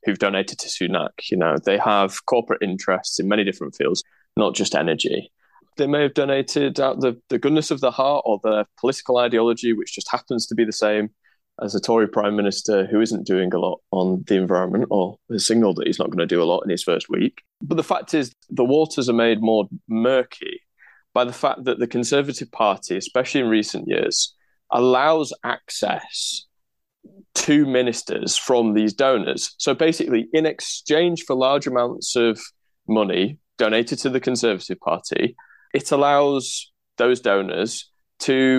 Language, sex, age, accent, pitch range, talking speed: English, male, 20-39, British, 105-140 Hz, 175 wpm